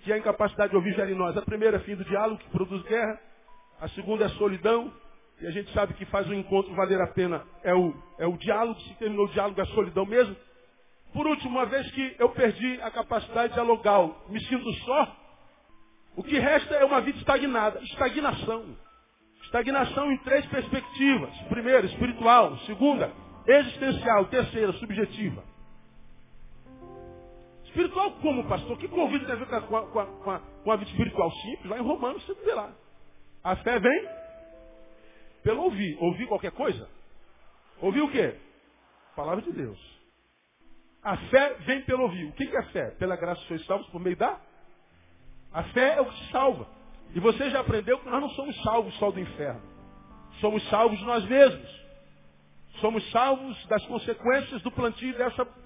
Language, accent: Portuguese, Brazilian